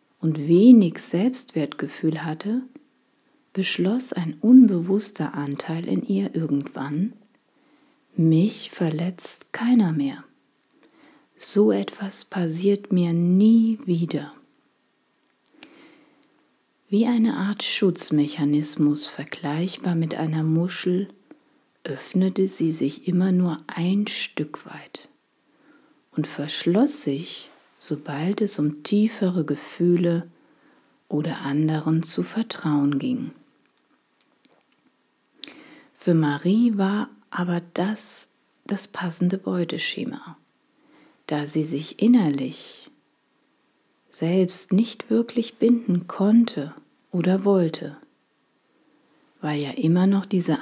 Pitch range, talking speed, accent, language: 160-230 Hz, 90 wpm, German, German